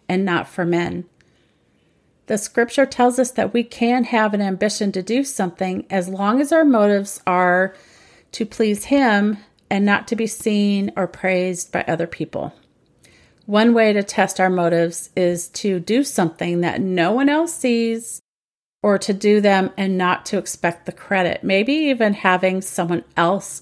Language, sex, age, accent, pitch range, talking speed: English, female, 40-59, American, 185-225 Hz, 170 wpm